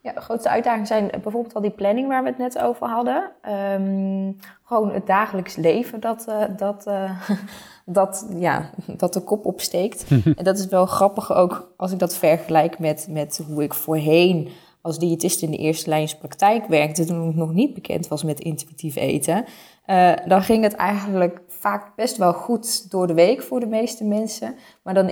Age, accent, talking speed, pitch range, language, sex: 20-39, Dutch, 175 wpm, 165-200 Hz, Dutch, female